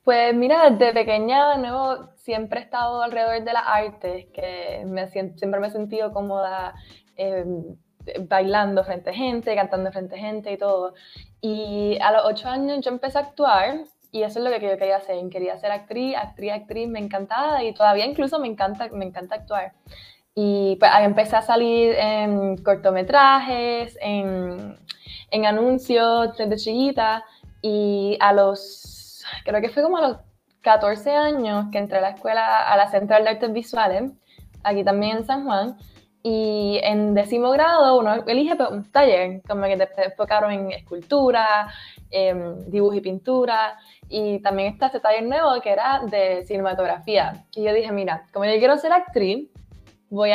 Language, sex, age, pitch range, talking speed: Spanish, female, 10-29, 200-245 Hz, 170 wpm